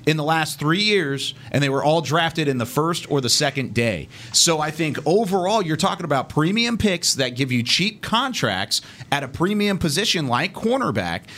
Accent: American